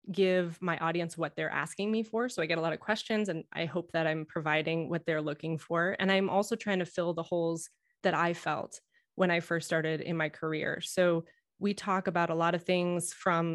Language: English